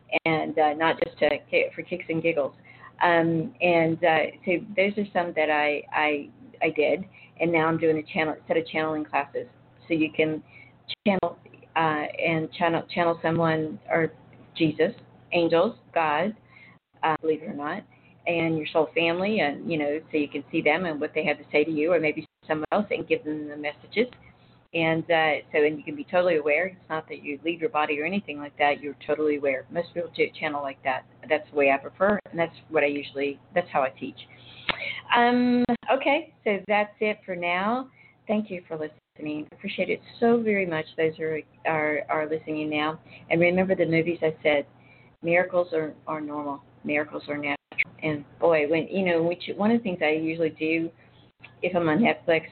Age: 40-59